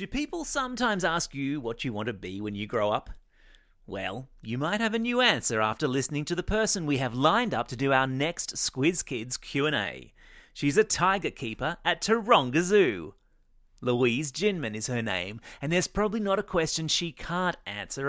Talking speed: 190 wpm